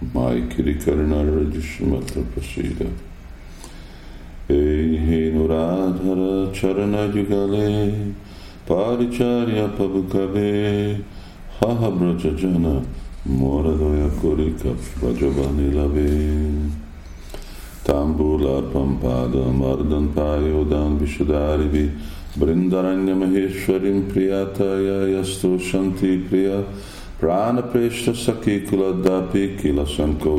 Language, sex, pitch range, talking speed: Hungarian, male, 70-95 Hz, 50 wpm